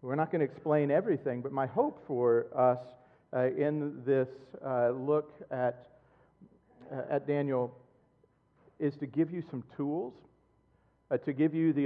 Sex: male